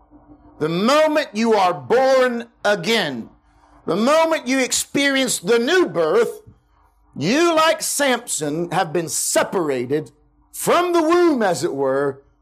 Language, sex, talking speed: English, male, 120 wpm